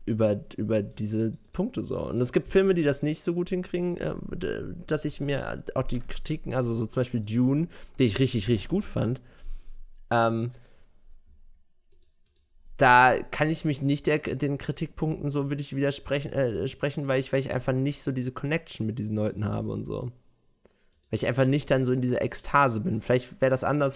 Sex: male